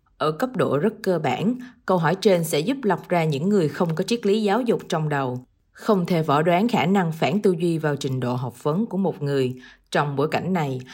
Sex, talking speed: female, 240 wpm